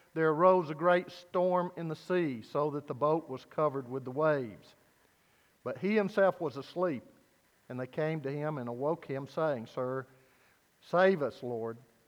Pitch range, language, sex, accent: 135-180 Hz, English, male, American